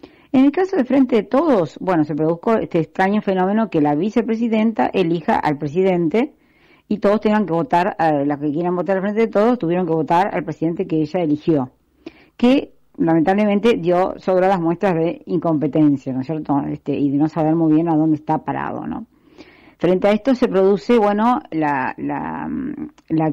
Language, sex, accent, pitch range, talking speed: Spanish, female, Argentinian, 155-215 Hz, 180 wpm